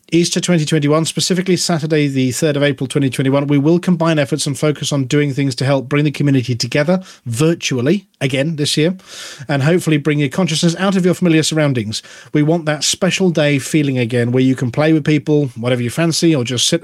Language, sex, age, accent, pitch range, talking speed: English, male, 40-59, British, 135-160 Hz, 205 wpm